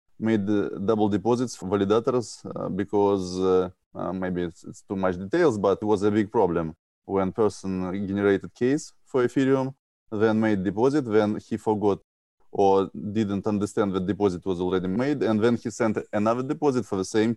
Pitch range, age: 100-115 Hz, 20-39